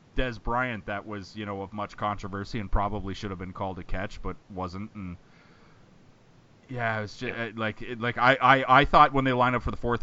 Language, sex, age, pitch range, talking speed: English, male, 30-49, 95-120 Hz, 225 wpm